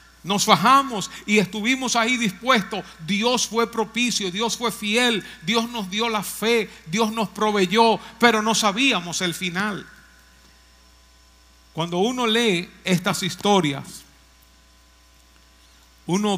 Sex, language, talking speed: male, Spanish, 115 wpm